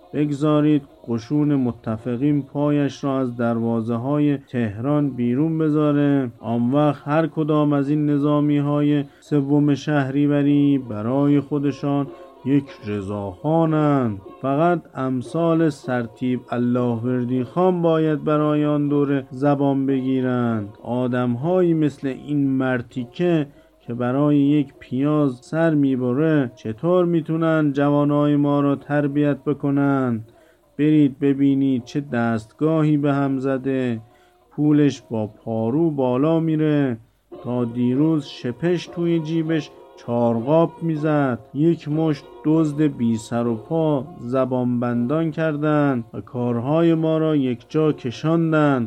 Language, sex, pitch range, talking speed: English, male, 125-150 Hz, 115 wpm